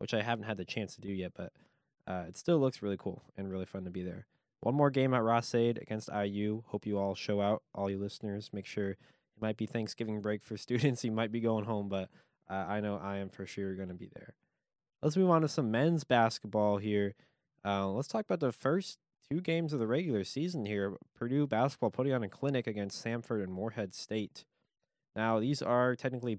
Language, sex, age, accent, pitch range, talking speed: English, male, 20-39, American, 100-130 Hz, 225 wpm